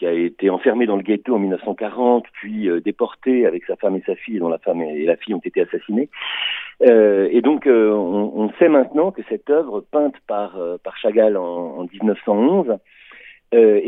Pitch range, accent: 105-160 Hz, French